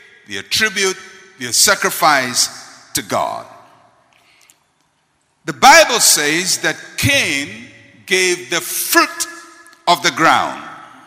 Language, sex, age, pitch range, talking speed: English, male, 50-69, 145-230 Hz, 90 wpm